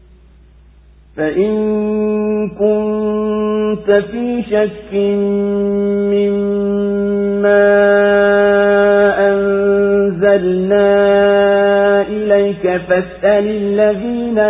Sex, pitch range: male, 185-210 Hz